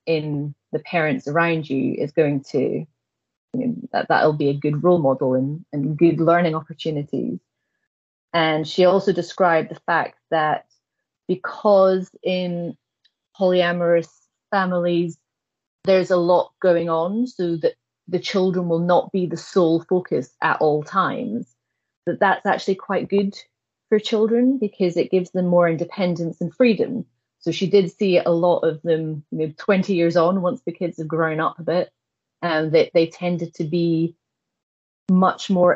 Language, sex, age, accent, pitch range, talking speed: English, female, 30-49, British, 155-185 Hz, 160 wpm